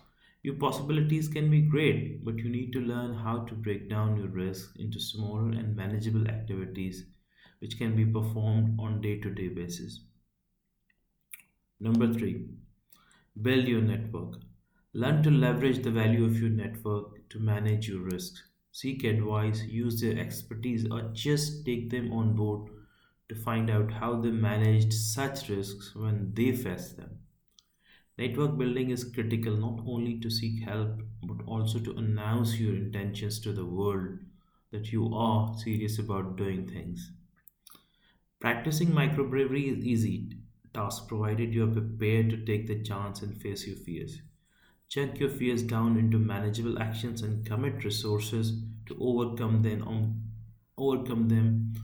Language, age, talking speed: English, 30-49, 145 wpm